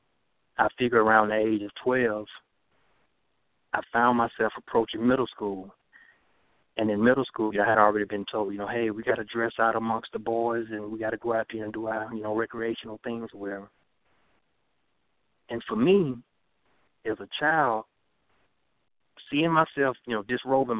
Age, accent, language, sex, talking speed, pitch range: 30-49, American, English, male, 175 wpm, 105-120 Hz